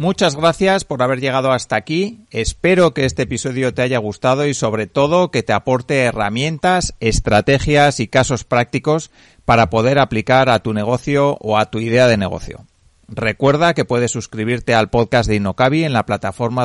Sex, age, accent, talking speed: male, 30-49, Spanish, 175 wpm